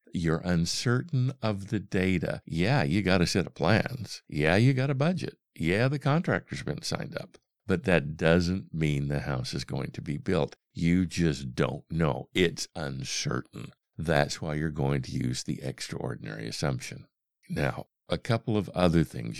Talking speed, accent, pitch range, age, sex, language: 170 wpm, American, 80-120 Hz, 60-79, male, English